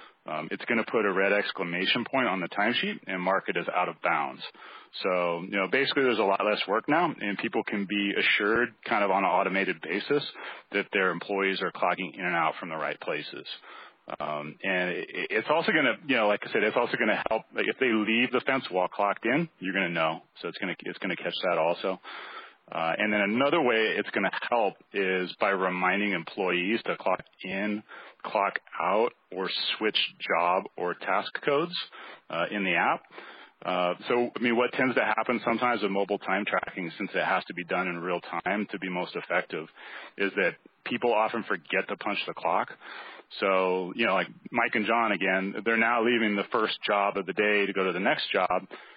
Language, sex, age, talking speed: English, male, 30-49, 215 wpm